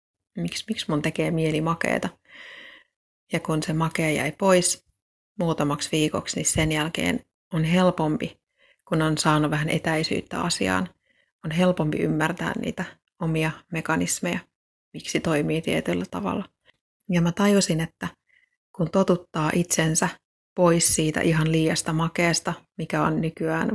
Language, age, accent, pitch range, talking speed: Finnish, 30-49, native, 155-180 Hz, 125 wpm